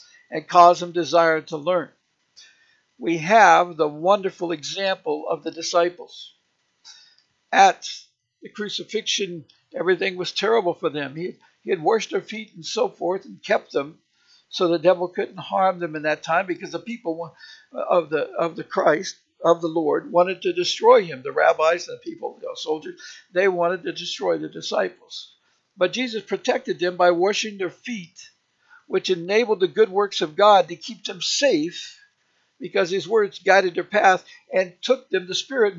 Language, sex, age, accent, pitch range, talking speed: English, male, 60-79, American, 175-235 Hz, 170 wpm